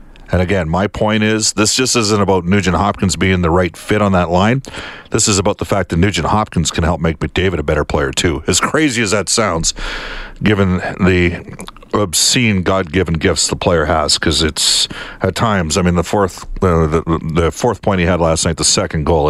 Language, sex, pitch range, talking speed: English, male, 90-115 Hz, 205 wpm